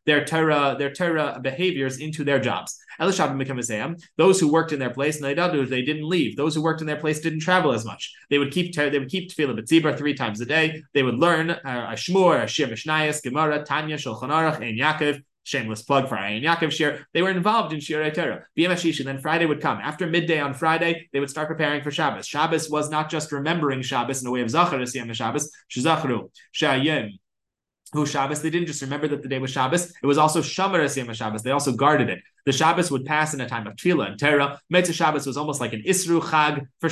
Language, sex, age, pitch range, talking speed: English, male, 20-39, 135-160 Hz, 215 wpm